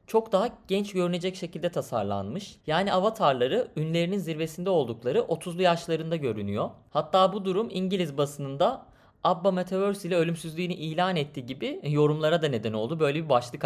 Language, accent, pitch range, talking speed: Turkish, native, 135-190 Hz, 145 wpm